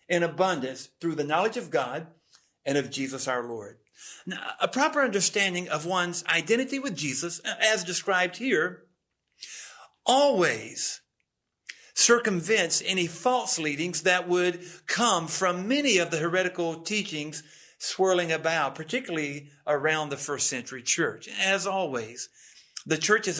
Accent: American